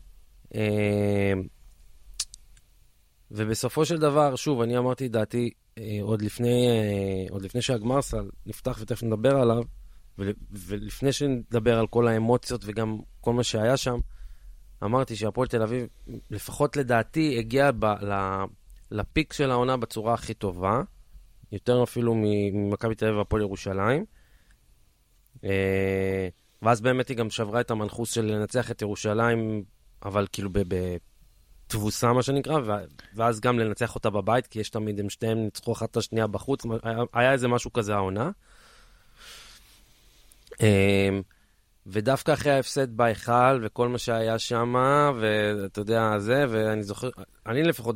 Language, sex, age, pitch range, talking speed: Hebrew, male, 20-39, 100-125 Hz, 130 wpm